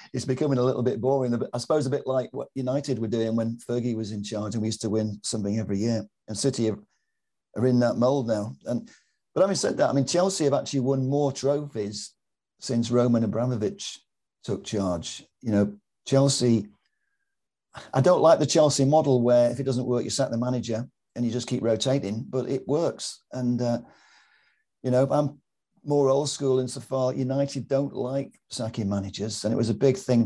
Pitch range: 110-130 Hz